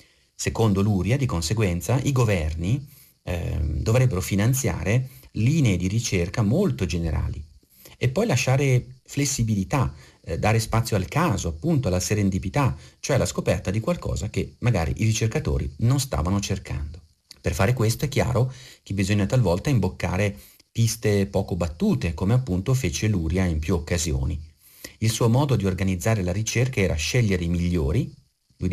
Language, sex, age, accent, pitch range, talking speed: Italian, male, 40-59, native, 85-115 Hz, 145 wpm